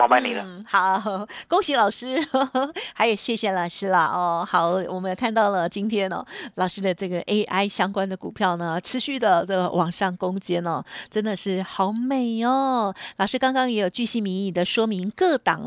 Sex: female